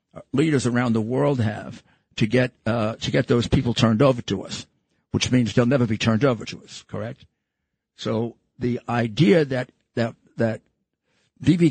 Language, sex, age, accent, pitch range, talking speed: English, male, 50-69, American, 115-135 Hz, 170 wpm